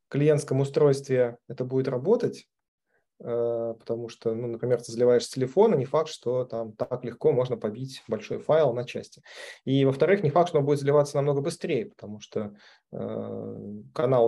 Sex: male